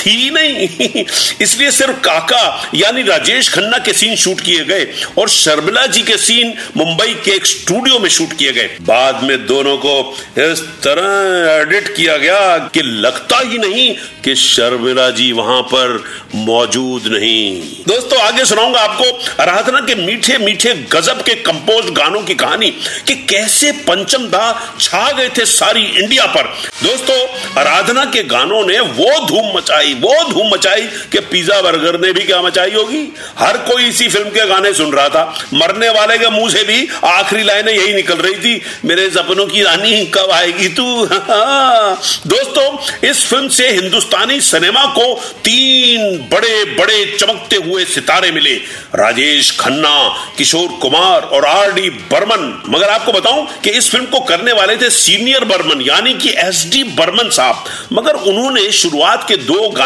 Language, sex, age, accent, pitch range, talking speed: Hindi, male, 50-69, native, 180-265 Hz, 95 wpm